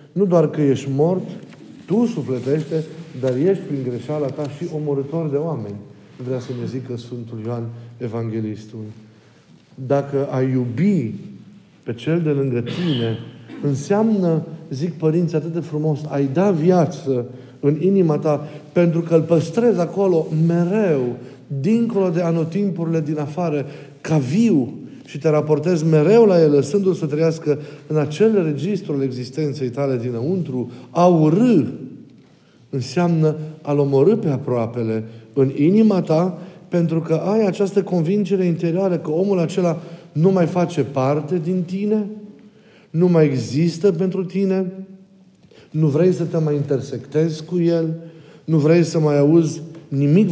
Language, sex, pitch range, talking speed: Romanian, male, 140-175 Hz, 135 wpm